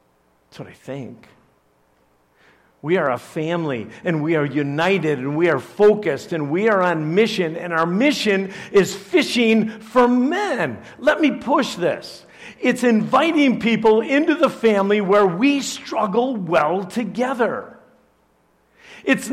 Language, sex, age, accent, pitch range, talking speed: English, male, 50-69, American, 140-240 Hz, 135 wpm